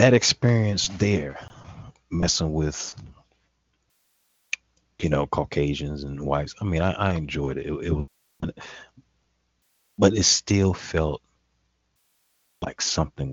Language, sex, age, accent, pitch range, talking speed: English, male, 40-59, American, 70-95 Hz, 115 wpm